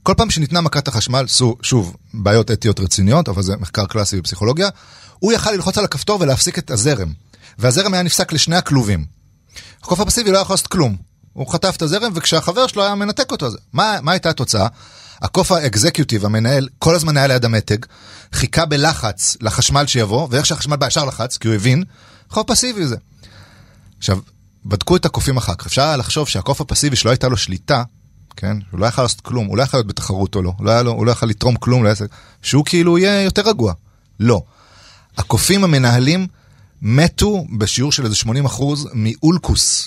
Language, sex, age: Hebrew, male, 30-49